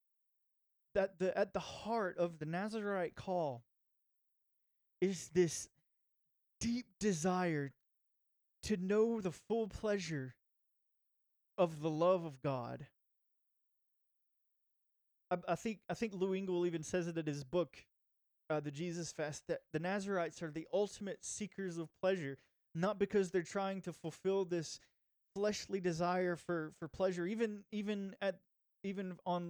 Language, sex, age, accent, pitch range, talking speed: English, male, 20-39, American, 155-190 Hz, 135 wpm